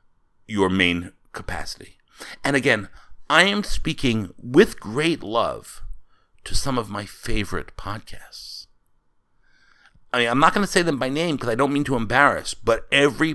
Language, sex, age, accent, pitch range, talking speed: English, male, 60-79, American, 100-160 Hz, 155 wpm